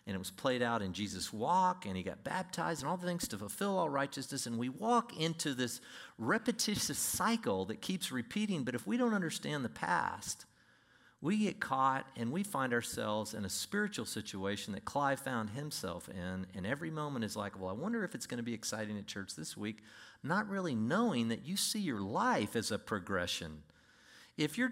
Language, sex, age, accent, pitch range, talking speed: English, male, 50-69, American, 110-185 Hz, 205 wpm